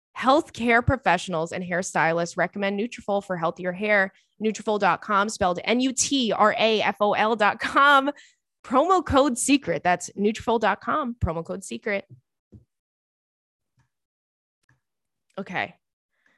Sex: female